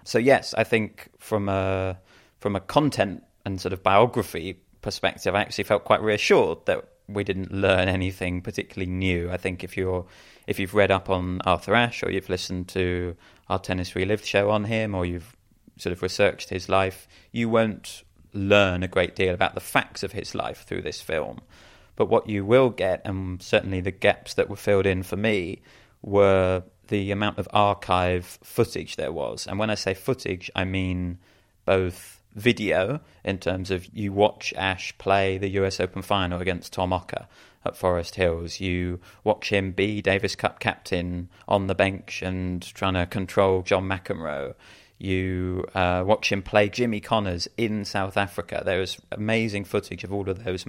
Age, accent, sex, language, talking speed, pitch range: 30-49, British, male, English, 180 wpm, 90-100 Hz